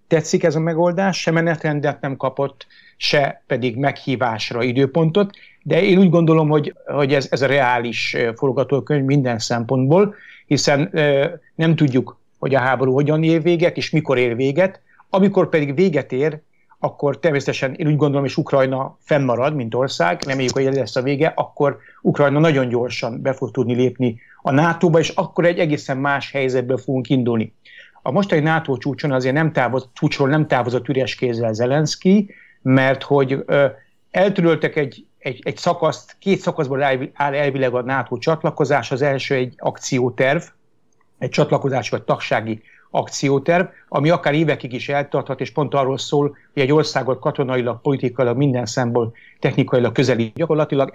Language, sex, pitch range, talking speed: Hungarian, male, 130-155 Hz, 155 wpm